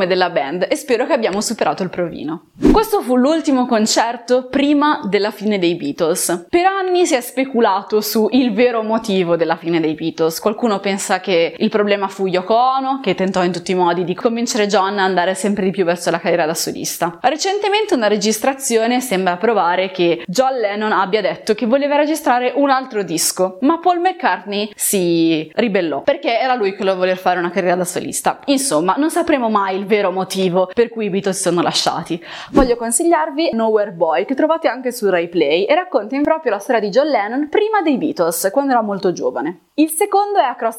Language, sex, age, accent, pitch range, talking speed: Italian, female, 20-39, native, 185-270 Hz, 195 wpm